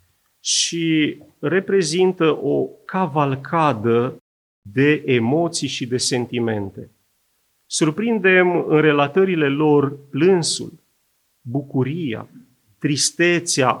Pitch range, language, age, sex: 120-175 Hz, Romanian, 40-59, male